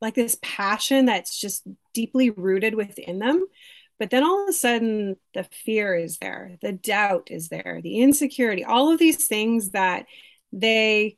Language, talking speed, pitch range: English, 165 wpm, 190-240 Hz